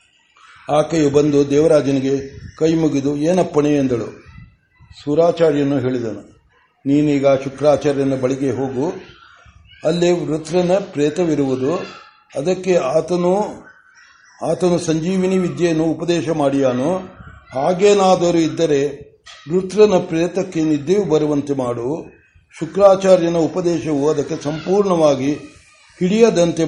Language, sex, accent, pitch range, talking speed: Kannada, male, native, 140-175 Hz, 80 wpm